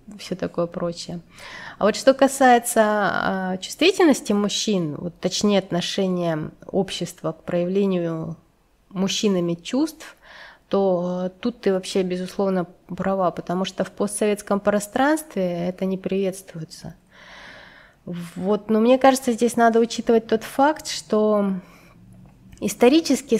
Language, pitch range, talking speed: Russian, 175-210 Hz, 110 wpm